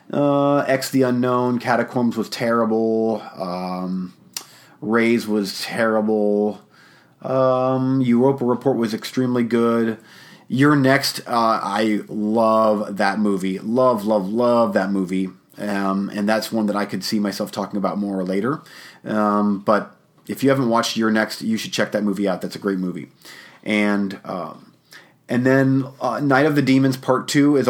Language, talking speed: English, 155 wpm